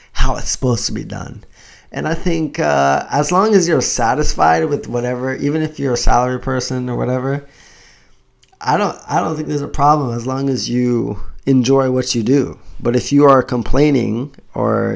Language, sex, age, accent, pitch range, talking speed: English, male, 20-39, American, 105-140 Hz, 190 wpm